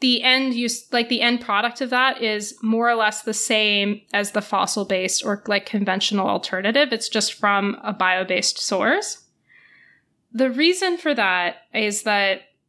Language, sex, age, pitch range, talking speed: English, female, 20-39, 200-245 Hz, 160 wpm